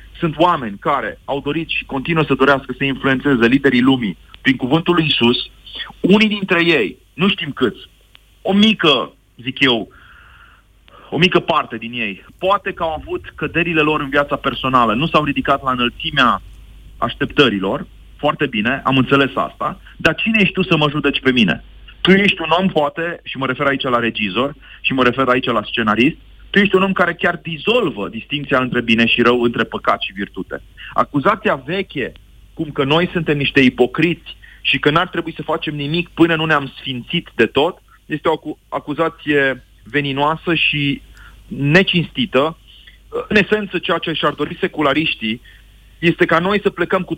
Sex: male